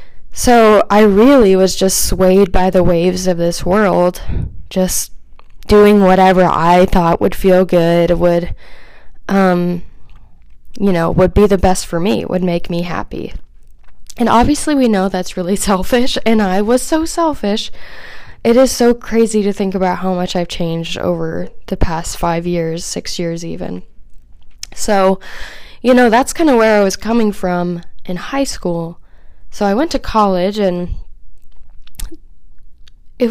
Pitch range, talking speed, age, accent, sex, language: 180-230 Hz, 155 wpm, 10-29, American, female, English